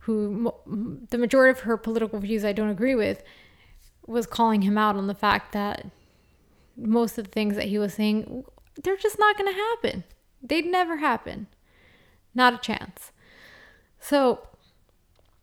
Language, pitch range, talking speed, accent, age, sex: English, 205-235 Hz, 160 wpm, American, 20-39, female